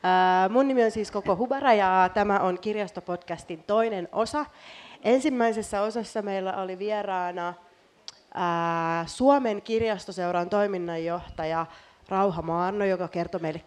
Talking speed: 110 wpm